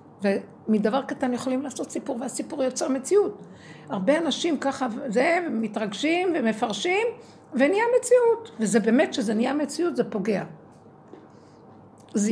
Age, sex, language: 60-79, female, Hebrew